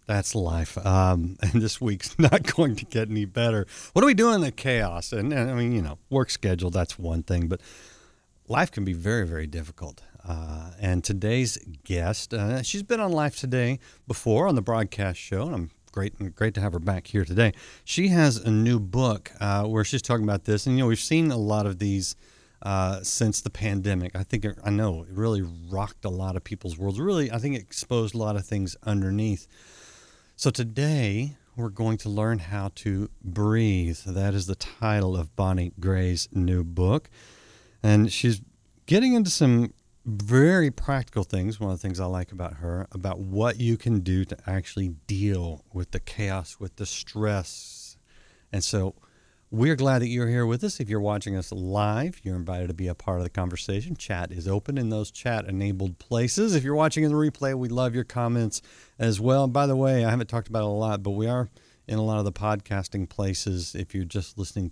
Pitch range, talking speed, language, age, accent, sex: 95-120 Hz, 205 wpm, English, 50-69, American, male